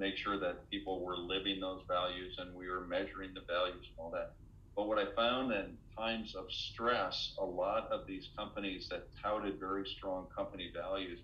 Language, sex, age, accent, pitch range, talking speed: English, male, 50-69, American, 85-100 Hz, 190 wpm